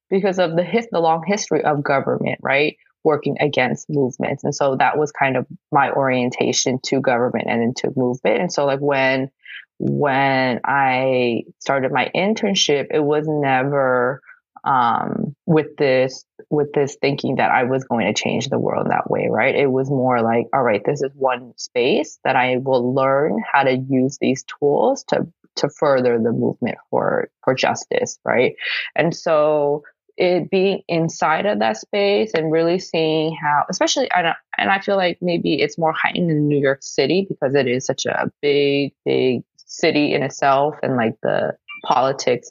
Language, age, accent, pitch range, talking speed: English, 20-39, American, 135-180 Hz, 175 wpm